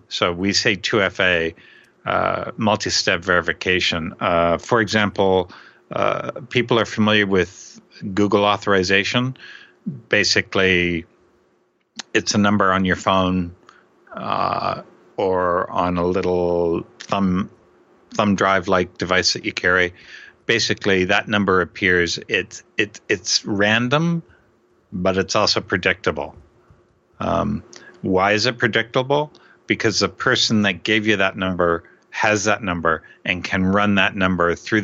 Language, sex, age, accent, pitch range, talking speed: English, male, 60-79, American, 90-110 Hz, 120 wpm